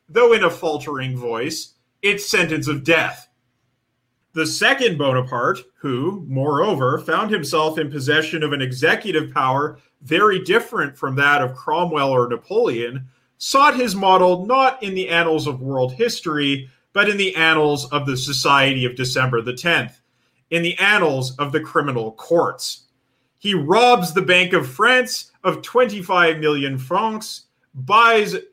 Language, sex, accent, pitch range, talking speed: English, male, American, 145-195 Hz, 145 wpm